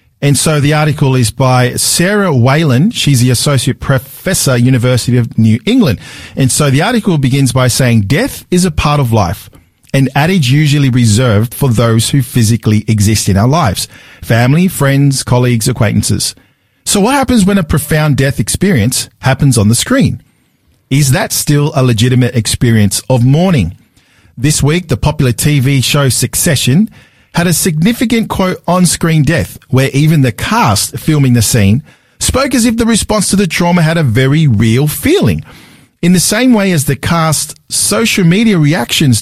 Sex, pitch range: male, 120-165 Hz